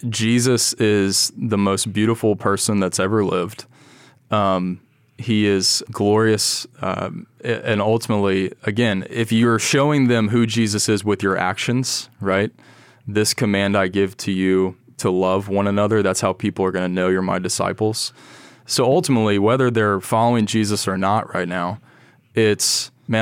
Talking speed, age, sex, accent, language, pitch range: 155 wpm, 20-39, male, American, English, 100-120 Hz